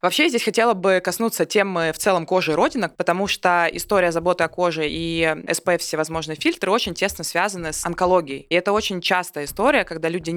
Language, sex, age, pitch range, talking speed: Russian, female, 20-39, 155-185 Hz, 190 wpm